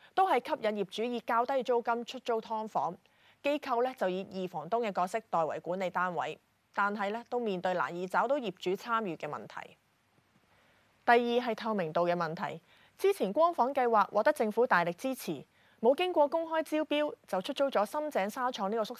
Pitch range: 190-260 Hz